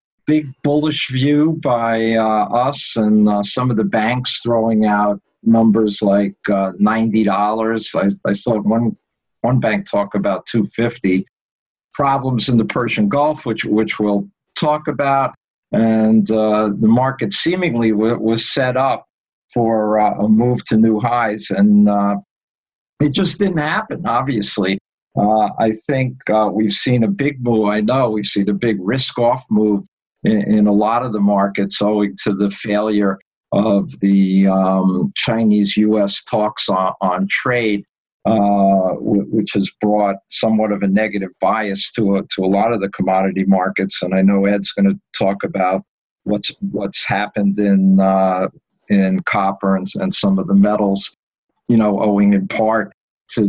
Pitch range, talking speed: 100-120 Hz, 160 wpm